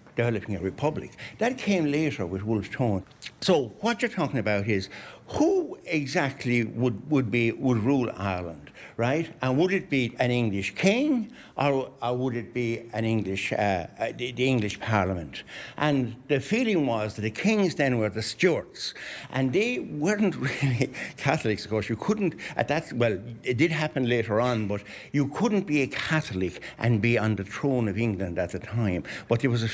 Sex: male